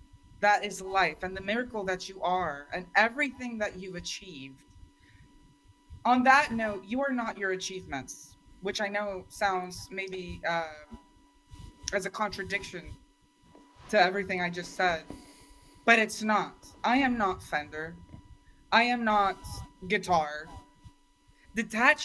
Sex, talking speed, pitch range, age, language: female, 130 wpm, 170-235 Hz, 20-39, English